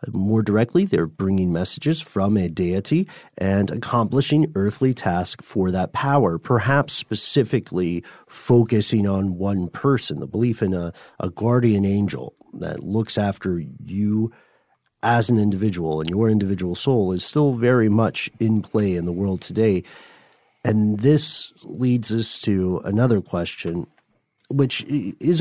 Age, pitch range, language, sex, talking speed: 40-59, 100-130 Hz, English, male, 135 wpm